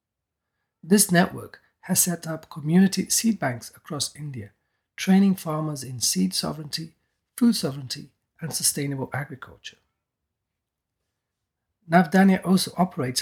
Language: English